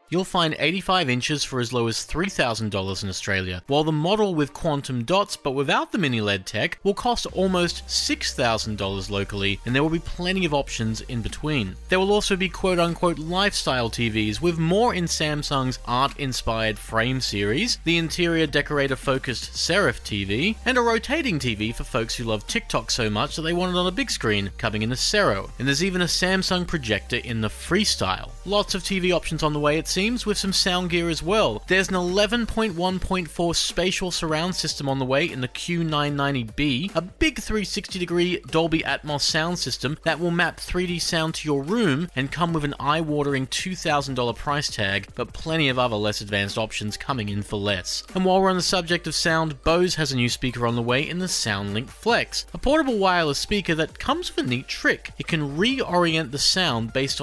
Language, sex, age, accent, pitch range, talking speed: English, male, 30-49, Australian, 120-180 Hz, 195 wpm